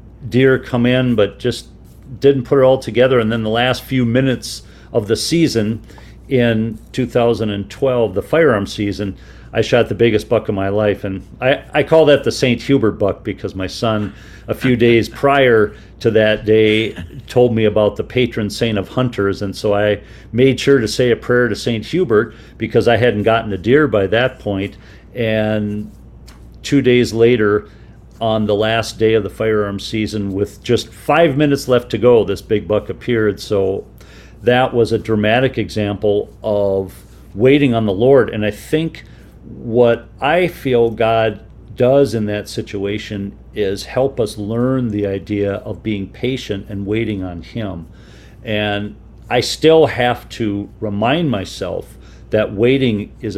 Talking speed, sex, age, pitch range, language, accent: 165 wpm, male, 50-69, 105-125 Hz, English, American